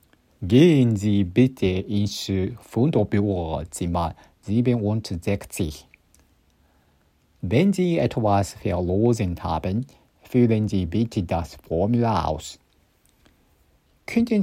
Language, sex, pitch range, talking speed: English, male, 90-120 Hz, 75 wpm